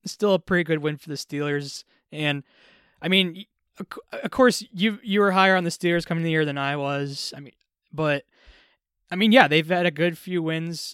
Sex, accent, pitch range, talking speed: male, American, 145-185 Hz, 210 wpm